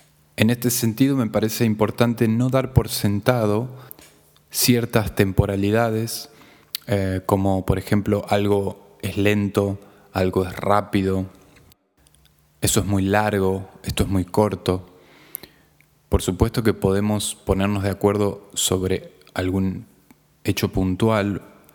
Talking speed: 115 wpm